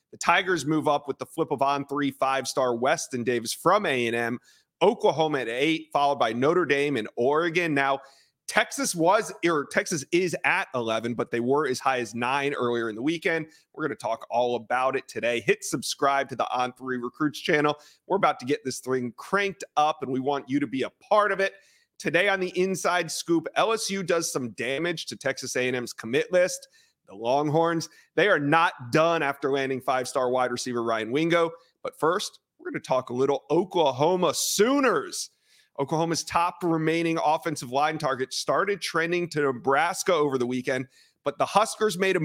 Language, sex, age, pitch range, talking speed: English, male, 30-49, 130-170 Hz, 185 wpm